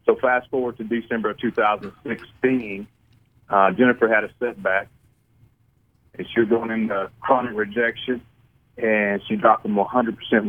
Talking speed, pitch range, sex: 135 wpm, 105-120 Hz, male